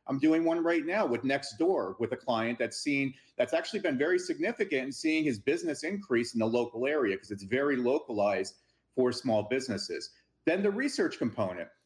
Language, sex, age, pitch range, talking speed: English, male, 40-59, 125-195 Hz, 190 wpm